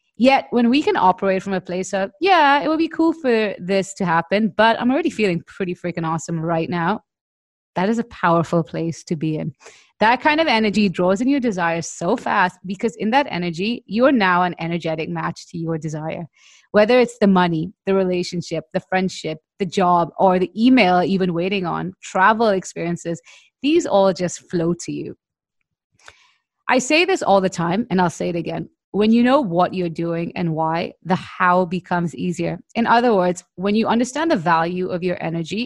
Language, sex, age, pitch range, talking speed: English, female, 30-49, 170-215 Hz, 195 wpm